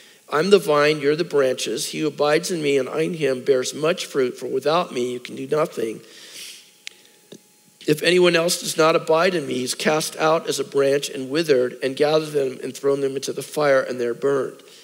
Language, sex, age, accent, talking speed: English, male, 50-69, American, 215 wpm